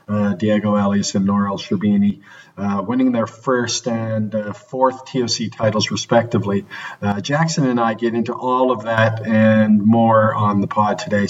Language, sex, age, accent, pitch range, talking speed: English, male, 40-59, American, 110-130 Hz, 160 wpm